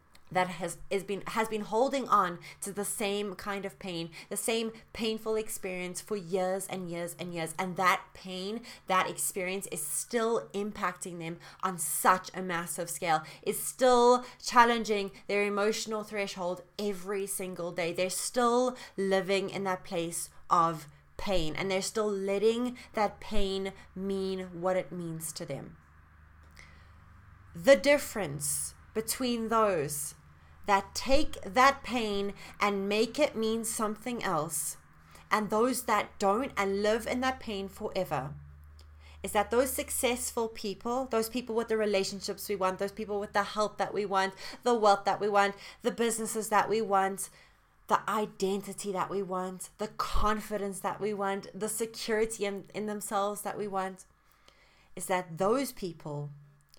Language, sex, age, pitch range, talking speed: English, female, 20-39, 180-215 Hz, 150 wpm